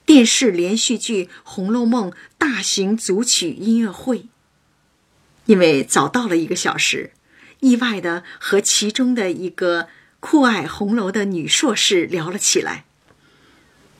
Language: Chinese